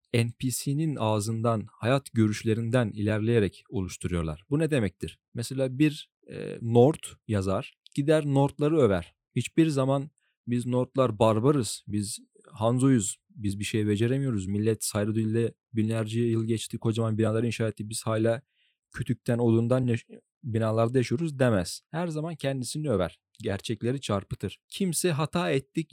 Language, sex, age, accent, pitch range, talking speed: Turkish, male, 40-59, native, 105-140 Hz, 125 wpm